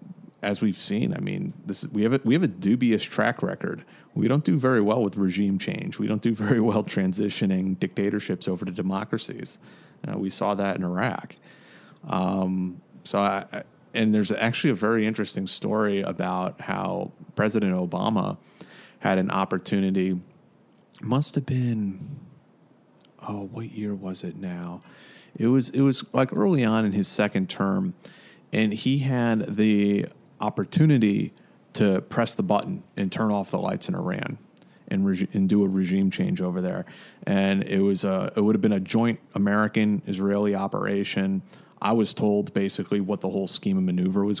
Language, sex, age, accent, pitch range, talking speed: English, male, 30-49, American, 95-115 Hz, 170 wpm